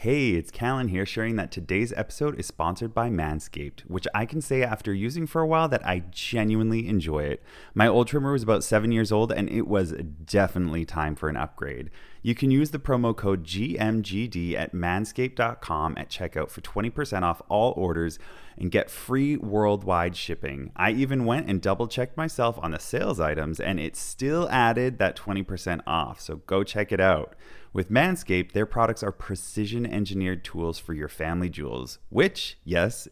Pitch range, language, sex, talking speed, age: 85-115 Hz, English, male, 180 wpm, 30-49